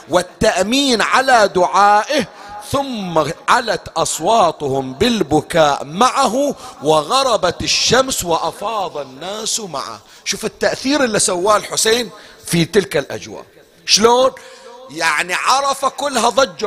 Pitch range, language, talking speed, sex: 160-240 Hz, Arabic, 95 wpm, male